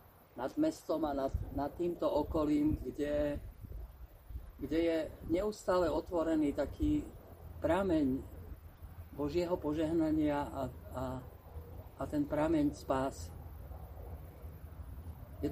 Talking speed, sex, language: 90 wpm, male, Slovak